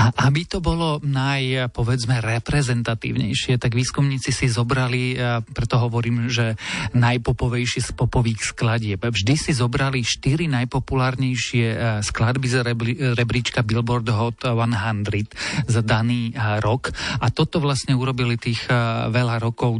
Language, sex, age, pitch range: Slovak, male, 40-59, 115-130 Hz